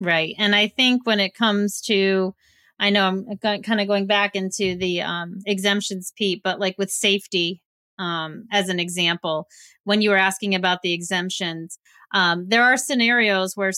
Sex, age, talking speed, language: female, 30-49, 175 wpm, English